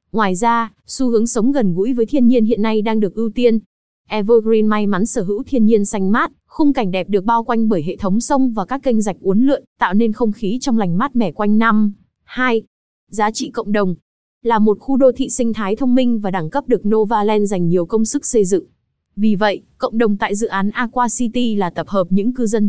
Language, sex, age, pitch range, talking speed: Vietnamese, female, 20-39, 205-250 Hz, 240 wpm